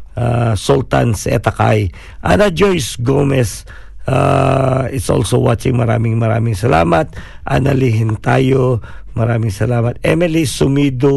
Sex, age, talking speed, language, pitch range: male, 50-69, 100 wpm, Filipino, 110-130 Hz